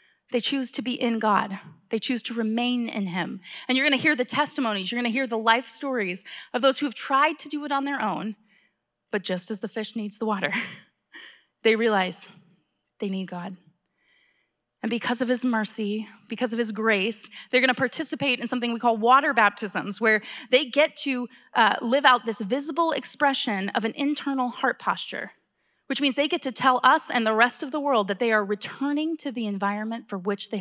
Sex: female